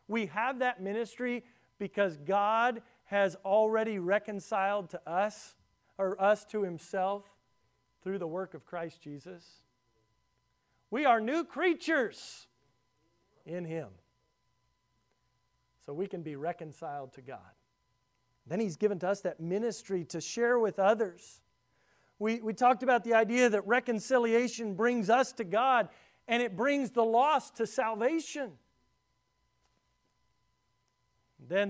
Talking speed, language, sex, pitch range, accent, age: 125 wpm, English, male, 155-220 Hz, American, 40-59